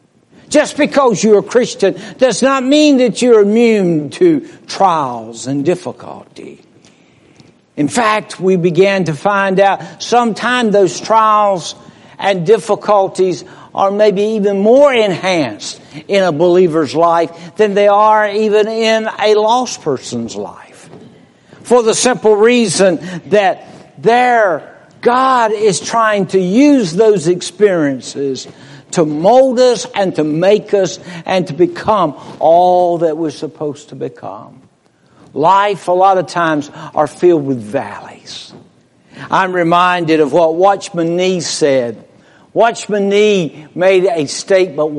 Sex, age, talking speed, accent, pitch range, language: male, 60-79, 125 wpm, American, 165-220 Hz, English